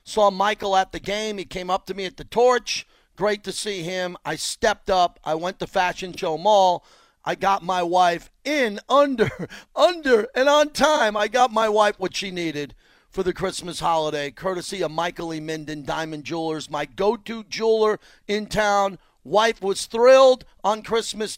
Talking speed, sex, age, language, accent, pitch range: 180 wpm, male, 40-59, English, American, 170-210 Hz